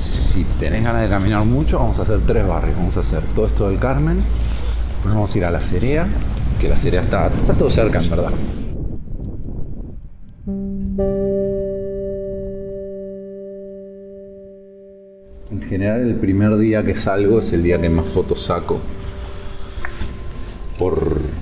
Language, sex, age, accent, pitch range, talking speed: English, male, 40-59, Argentinian, 90-120 Hz, 135 wpm